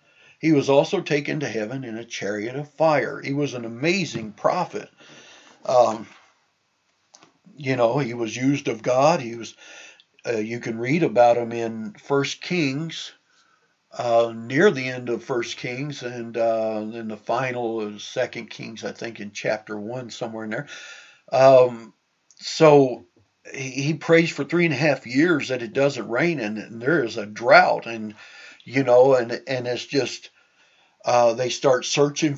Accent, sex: American, male